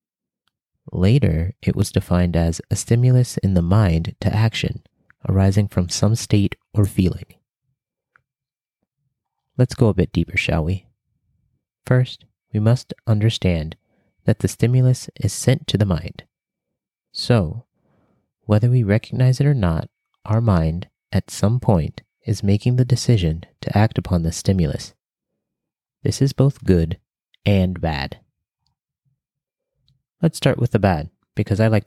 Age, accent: 30-49, American